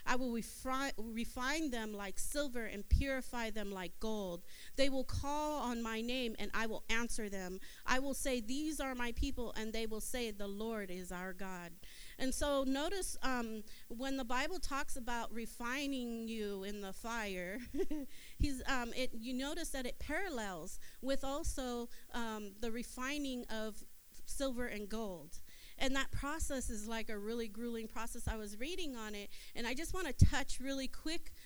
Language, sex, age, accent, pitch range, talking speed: English, female, 40-59, American, 225-275 Hz, 170 wpm